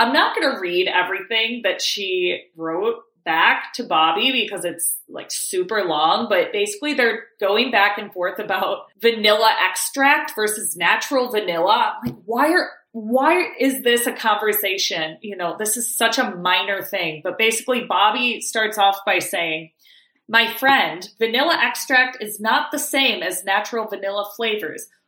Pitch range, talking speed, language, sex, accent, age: 195-260 Hz, 160 wpm, English, female, American, 30-49